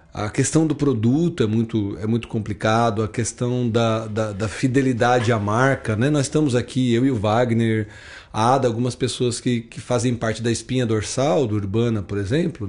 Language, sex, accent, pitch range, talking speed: Portuguese, male, Brazilian, 110-150 Hz, 190 wpm